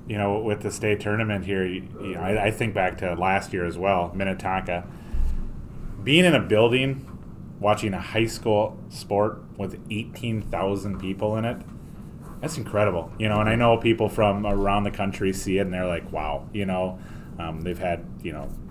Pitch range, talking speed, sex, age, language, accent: 95-110 Hz, 185 wpm, male, 30-49, English, American